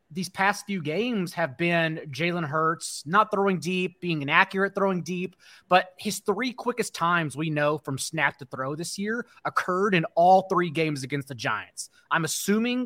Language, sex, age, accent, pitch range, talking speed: English, male, 30-49, American, 155-195 Hz, 175 wpm